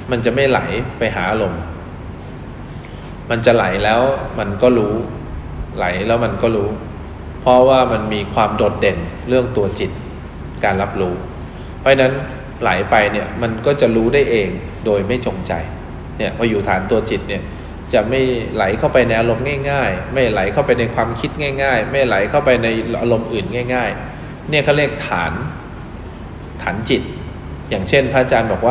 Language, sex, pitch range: English, male, 95-125 Hz